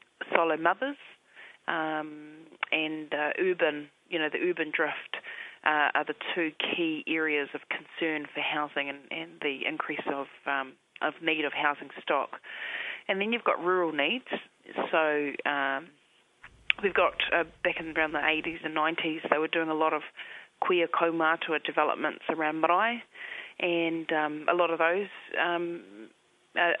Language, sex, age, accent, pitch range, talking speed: English, female, 30-49, Australian, 155-180 Hz, 155 wpm